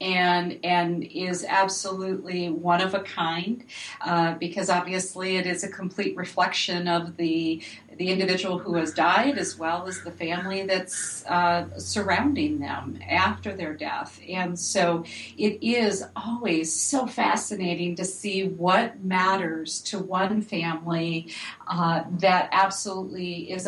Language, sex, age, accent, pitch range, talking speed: English, female, 40-59, American, 175-195 Hz, 135 wpm